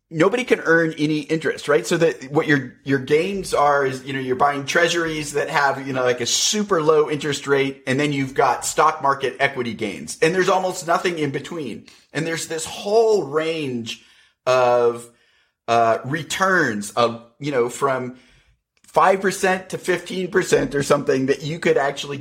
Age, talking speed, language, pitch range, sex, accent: 30-49, 175 wpm, English, 125-165 Hz, male, American